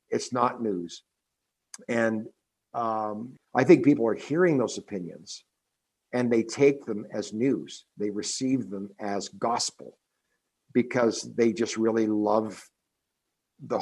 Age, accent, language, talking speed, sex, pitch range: 60-79, American, English, 125 wpm, male, 115-140 Hz